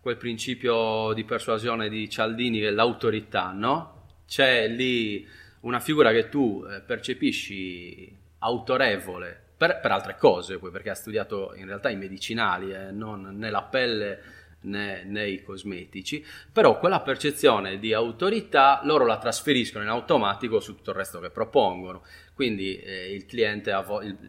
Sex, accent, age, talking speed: male, native, 30-49, 150 wpm